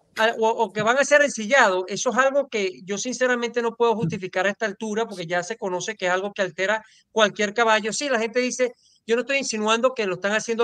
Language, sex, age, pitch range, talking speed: English, male, 40-59, 205-245 Hz, 230 wpm